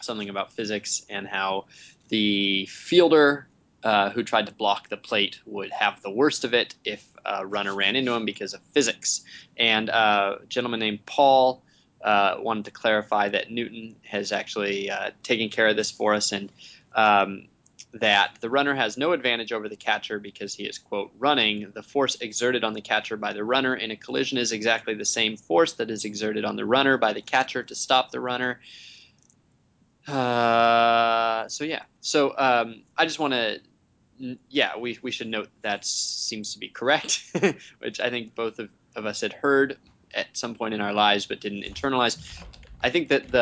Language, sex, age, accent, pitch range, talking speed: English, male, 20-39, American, 105-125 Hz, 190 wpm